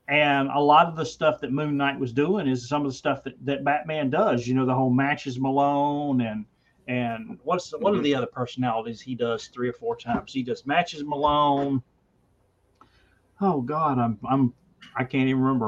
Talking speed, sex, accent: 200 wpm, male, American